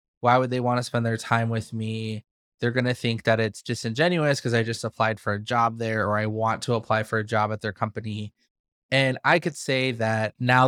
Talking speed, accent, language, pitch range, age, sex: 235 wpm, American, English, 110-130 Hz, 20-39, male